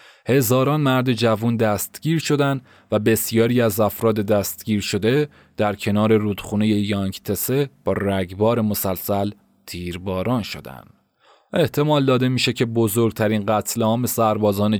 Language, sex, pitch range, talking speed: Persian, male, 105-125 Hz, 115 wpm